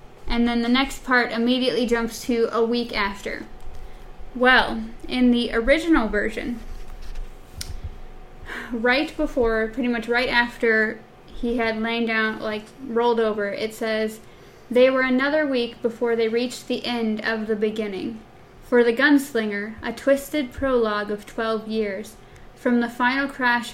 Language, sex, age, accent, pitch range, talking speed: English, female, 10-29, American, 220-245 Hz, 140 wpm